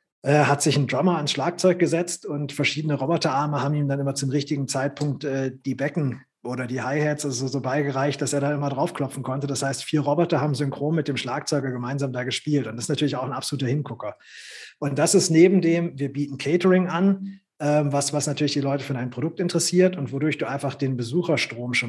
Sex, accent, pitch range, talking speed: male, German, 130-155 Hz, 205 wpm